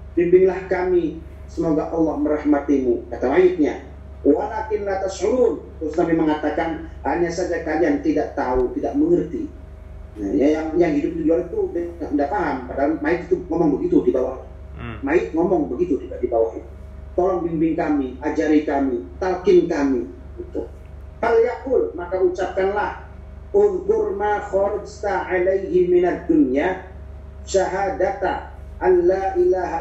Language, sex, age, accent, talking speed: Indonesian, male, 40-59, native, 125 wpm